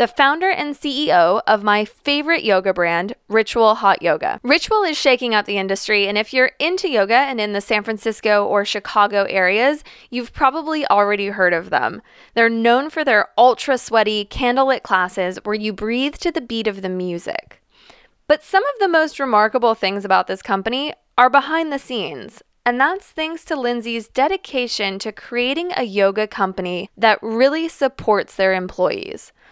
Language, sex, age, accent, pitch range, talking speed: English, female, 20-39, American, 195-265 Hz, 170 wpm